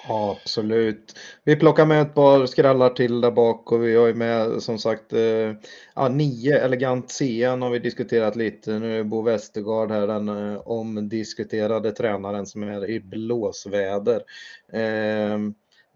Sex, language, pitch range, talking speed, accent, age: male, Swedish, 110-125 Hz, 155 wpm, native, 20-39